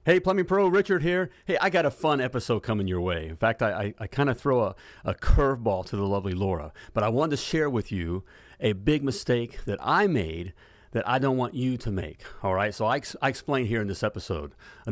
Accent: American